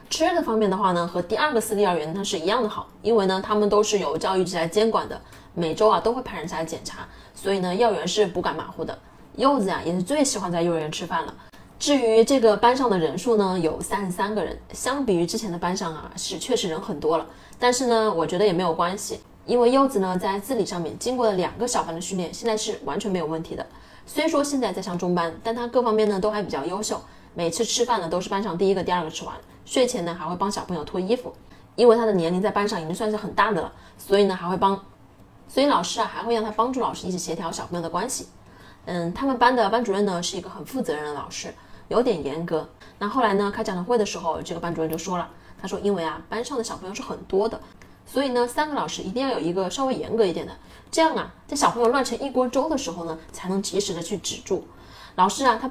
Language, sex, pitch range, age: Chinese, female, 175-230 Hz, 20-39